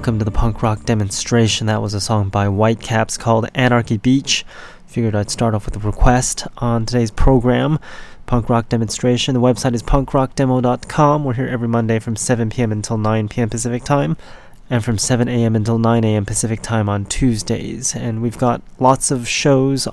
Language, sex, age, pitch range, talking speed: English, male, 20-39, 110-125 Hz, 170 wpm